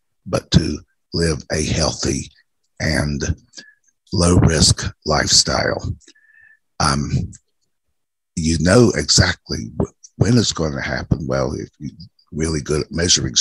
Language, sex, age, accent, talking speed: English, male, 60-79, American, 105 wpm